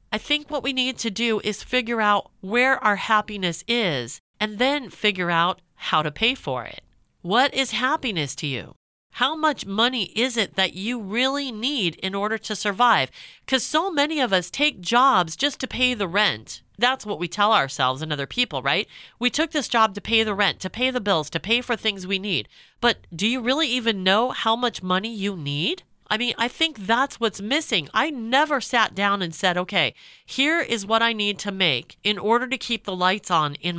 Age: 40-59